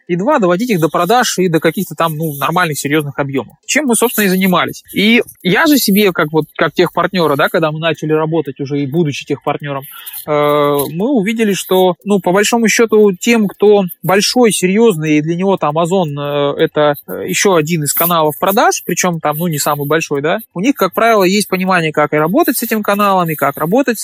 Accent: native